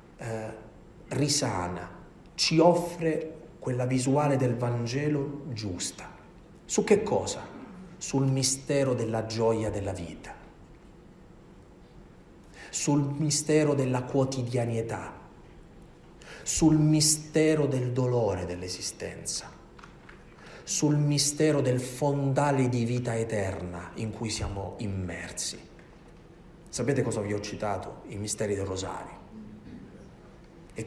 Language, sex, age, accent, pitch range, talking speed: Italian, male, 40-59, native, 110-150 Hz, 95 wpm